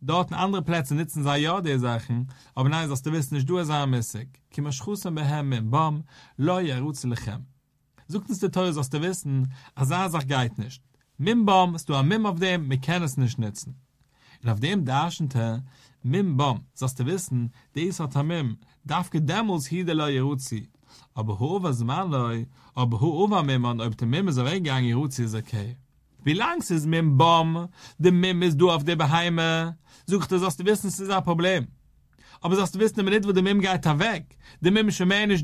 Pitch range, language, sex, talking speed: 130-185 Hz, English, male, 215 wpm